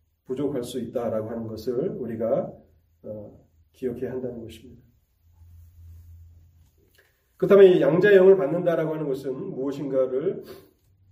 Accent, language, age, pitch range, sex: native, Korean, 30-49, 110-160 Hz, male